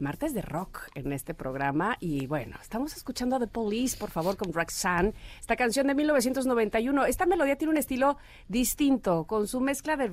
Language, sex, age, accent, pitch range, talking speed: Spanish, female, 40-59, Mexican, 180-240 Hz, 185 wpm